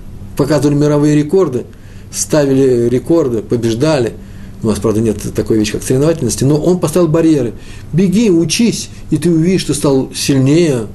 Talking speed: 140 wpm